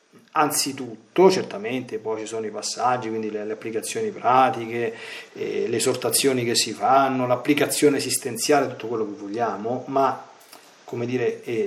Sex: male